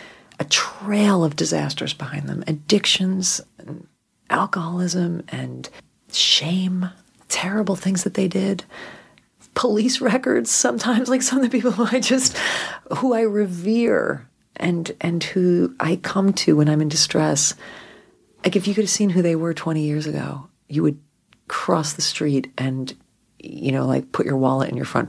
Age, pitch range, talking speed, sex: 40-59, 130-180 Hz, 160 wpm, female